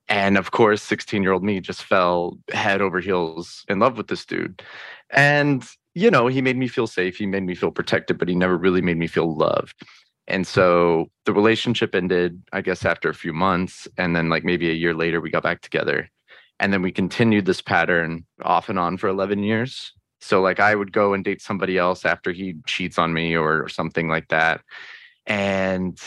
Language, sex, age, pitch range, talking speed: English, male, 20-39, 90-115 Hz, 205 wpm